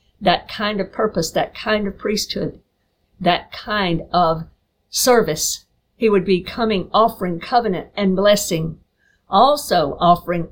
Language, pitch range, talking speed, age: English, 175-215 Hz, 125 wpm, 50-69